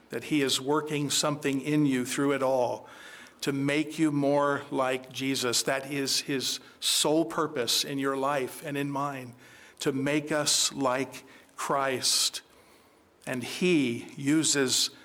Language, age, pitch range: English, 50-69, 130-150 Hz